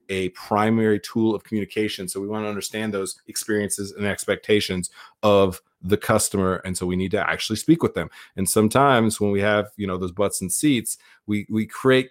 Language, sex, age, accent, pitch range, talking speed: English, male, 30-49, American, 95-115 Hz, 200 wpm